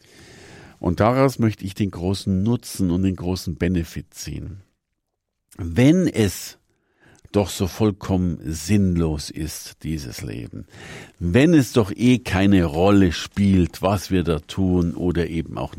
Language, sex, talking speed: German, male, 135 wpm